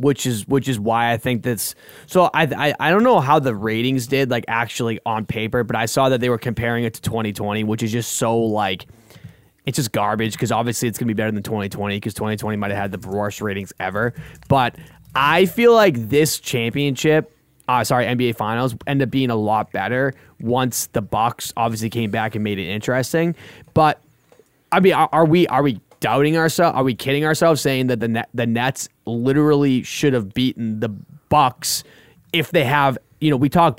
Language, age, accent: English, 20-39, American